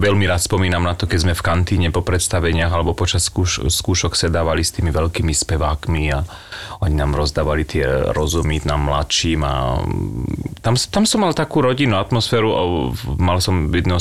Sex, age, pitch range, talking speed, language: male, 30-49, 75-95 Hz, 165 wpm, Slovak